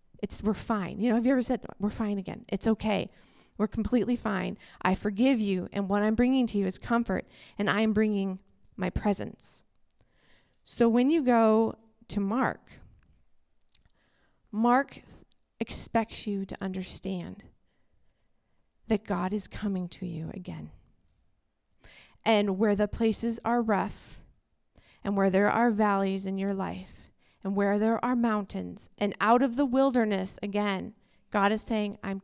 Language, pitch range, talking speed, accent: English, 190-225 Hz, 150 wpm, American